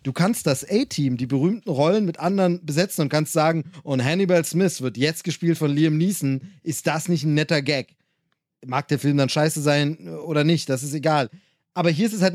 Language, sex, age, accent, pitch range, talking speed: German, male, 30-49, German, 145-175 Hz, 215 wpm